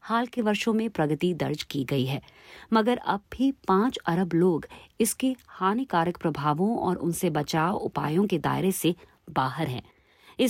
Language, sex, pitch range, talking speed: Hindi, female, 150-200 Hz, 160 wpm